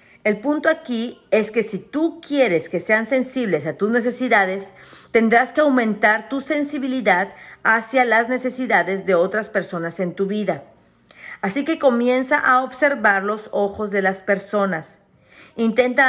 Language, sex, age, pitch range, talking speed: Spanish, female, 40-59, 190-250 Hz, 145 wpm